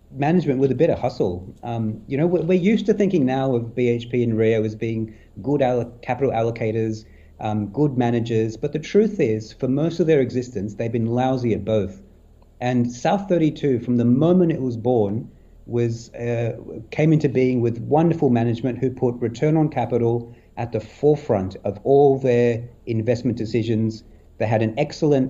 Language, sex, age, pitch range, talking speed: English, male, 40-59, 115-140 Hz, 175 wpm